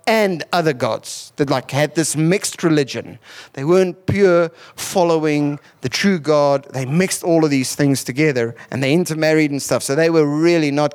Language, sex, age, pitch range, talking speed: English, male, 30-49, 135-190 Hz, 180 wpm